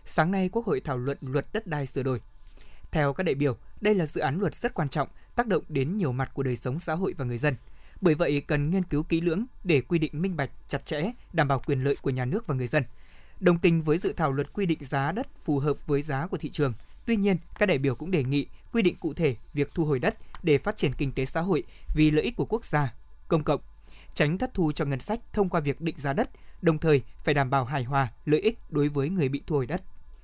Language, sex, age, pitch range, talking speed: Vietnamese, male, 20-39, 140-185 Hz, 270 wpm